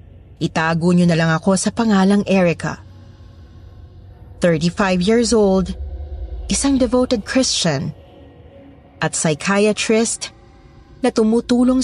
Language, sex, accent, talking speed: Filipino, female, native, 90 wpm